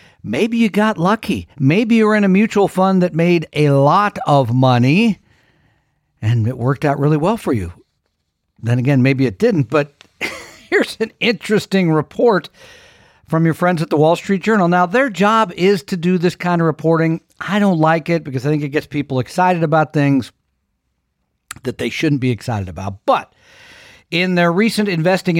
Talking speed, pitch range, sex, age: 180 wpm, 130-205 Hz, male, 50-69